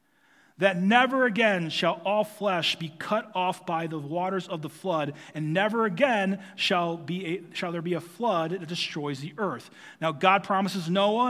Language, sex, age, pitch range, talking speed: English, male, 30-49, 180-230 Hz, 180 wpm